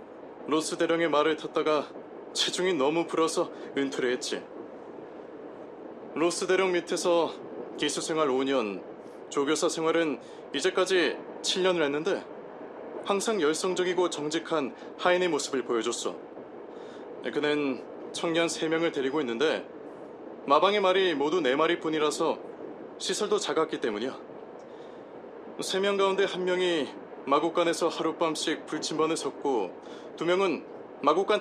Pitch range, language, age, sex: 155-195 Hz, Korean, 20-39, male